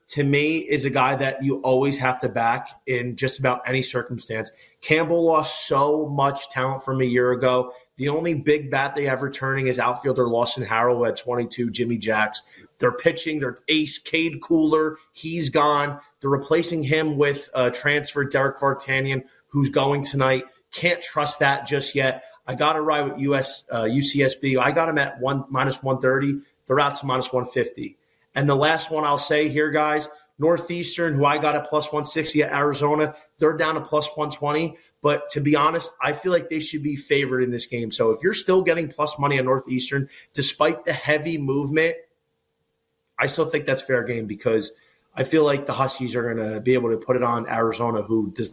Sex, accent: male, American